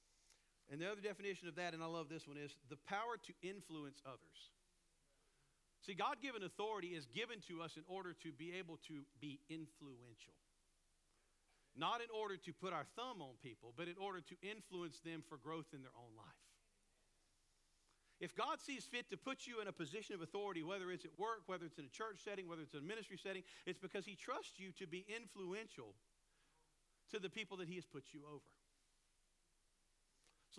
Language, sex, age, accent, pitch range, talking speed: English, male, 50-69, American, 145-185 Hz, 195 wpm